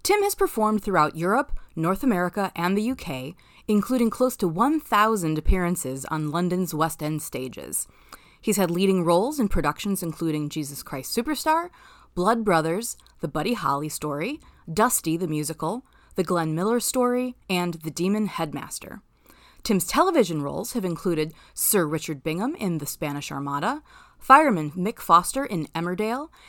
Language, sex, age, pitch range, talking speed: English, female, 30-49, 160-235 Hz, 145 wpm